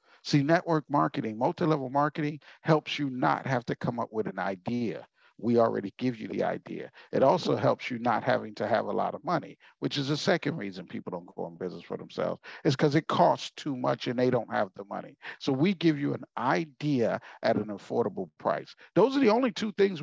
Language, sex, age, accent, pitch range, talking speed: English, male, 50-69, American, 140-230 Hz, 220 wpm